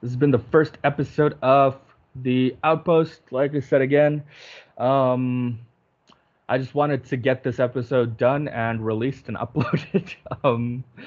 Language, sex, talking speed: English, male, 145 wpm